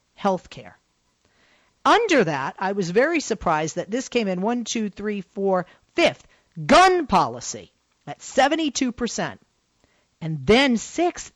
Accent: American